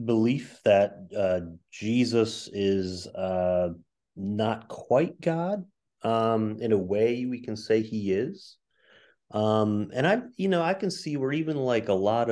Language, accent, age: English, American, 30-49